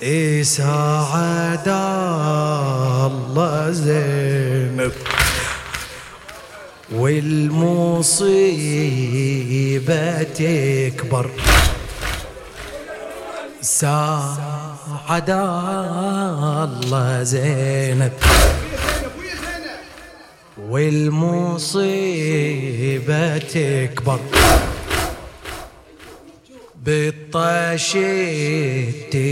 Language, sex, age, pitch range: English, male, 30-49, 135-165 Hz